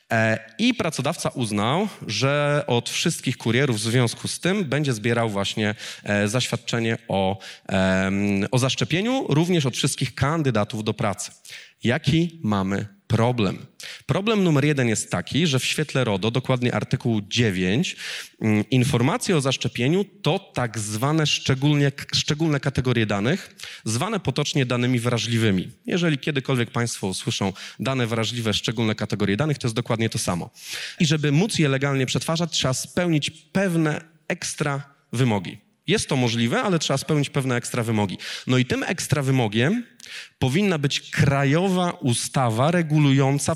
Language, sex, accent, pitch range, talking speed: Polish, male, native, 115-150 Hz, 130 wpm